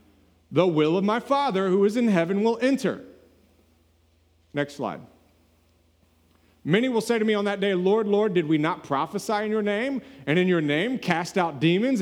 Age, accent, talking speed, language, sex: 40-59, American, 185 wpm, English, male